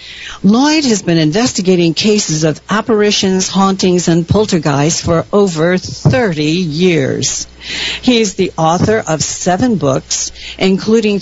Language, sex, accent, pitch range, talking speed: English, female, American, 150-200 Hz, 120 wpm